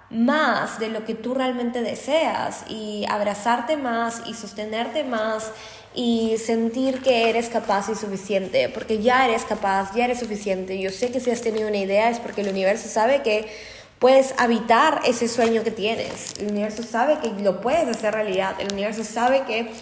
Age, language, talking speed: 20-39, Spanish, 180 wpm